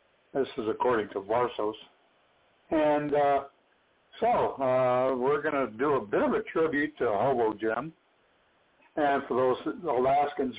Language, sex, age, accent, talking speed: English, male, 60-79, American, 140 wpm